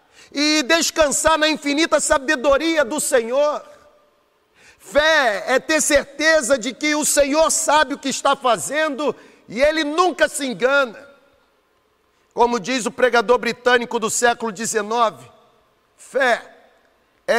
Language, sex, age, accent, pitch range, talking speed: Portuguese, male, 50-69, Brazilian, 230-285 Hz, 120 wpm